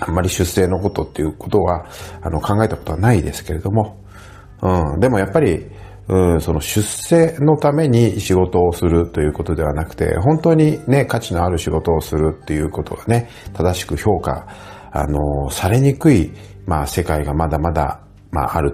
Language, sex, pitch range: Japanese, male, 75-100 Hz